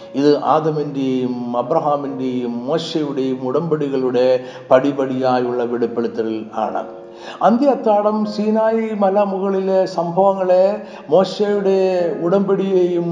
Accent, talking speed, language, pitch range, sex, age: native, 75 wpm, Malayalam, 140-190 Hz, male, 60-79